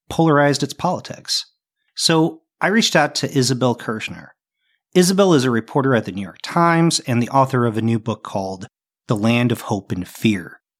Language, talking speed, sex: English, 185 wpm, male